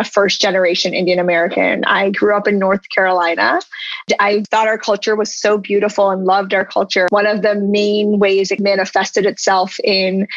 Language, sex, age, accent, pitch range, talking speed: English, female, 20-39, American, 195-230 Hz, 170 wpm